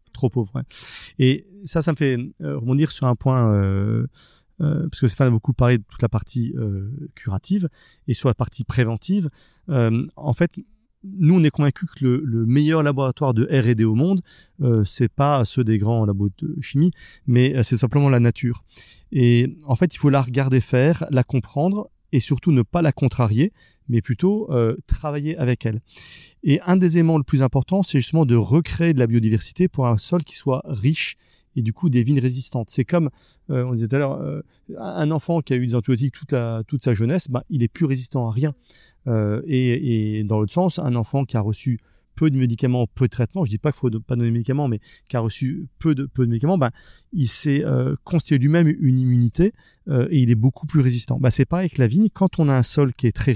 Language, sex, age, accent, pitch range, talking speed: French, male, 30-49, French, 120-150 Hz, 230 wpm